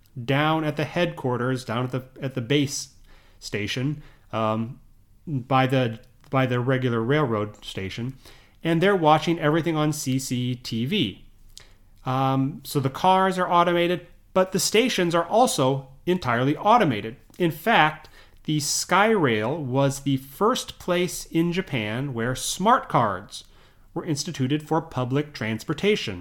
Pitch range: 125-165 Hz